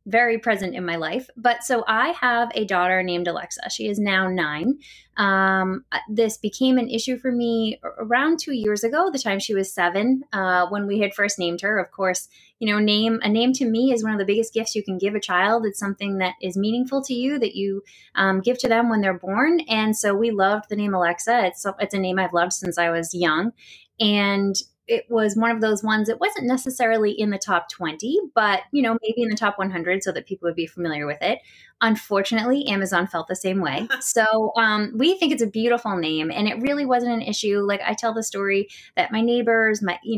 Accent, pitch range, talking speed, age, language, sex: American, 190-235 Hz, 230 wpm, 20-39, English, female